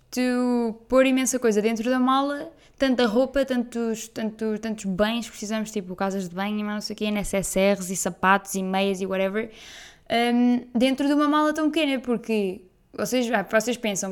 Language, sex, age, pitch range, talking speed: Portuguese, female, 10-29, 215-270 Hz, 185 wpm